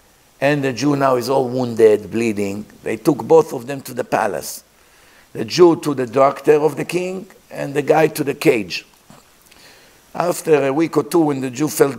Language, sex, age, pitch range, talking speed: English, male, 50-69, 130-175 Hz, 195 wpm